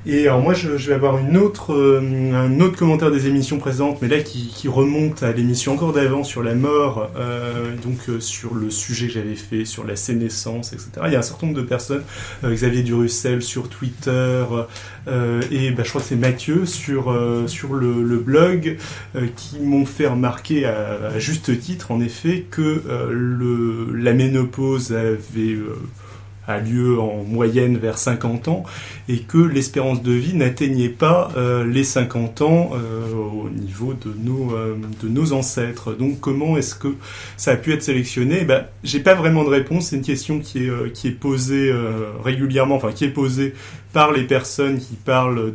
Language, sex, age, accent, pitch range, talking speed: French, male, 30-49, French, 115-140 Hz, 185 wpm